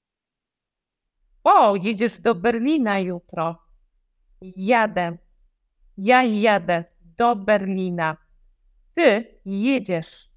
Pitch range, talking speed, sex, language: 175-225 Hz, 70 wpm, female, Polish